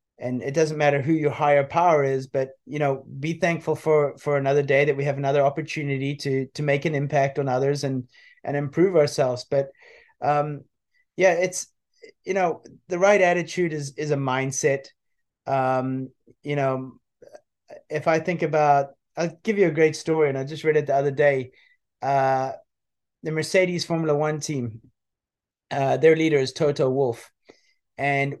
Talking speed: 170 wpm